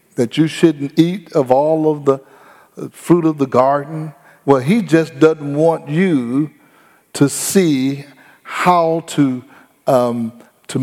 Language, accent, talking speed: English, American, 135 wpm